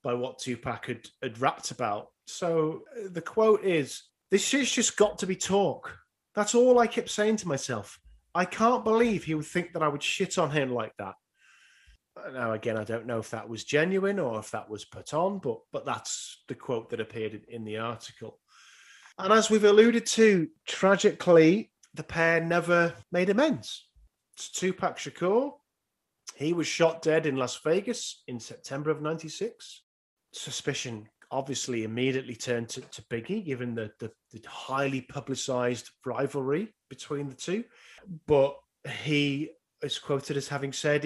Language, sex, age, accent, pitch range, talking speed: English, male, 30-49, British, 125-180 Hz, 165 wpm